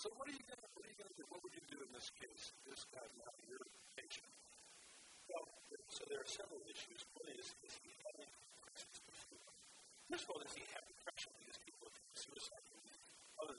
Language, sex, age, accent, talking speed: English, female, 40-59, American, 165 wpm